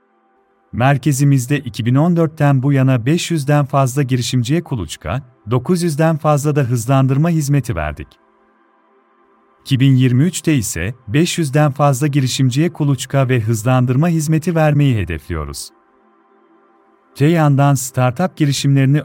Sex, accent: male, native